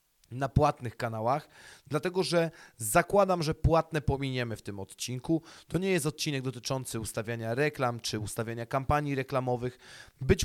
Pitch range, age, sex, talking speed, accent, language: 120-155 Hz, 30-49, male, 140 wpm, native, Polish